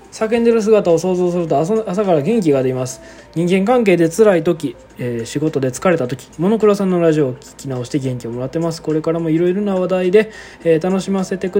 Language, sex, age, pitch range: Japanese, male, 20-39, 130-205 Hz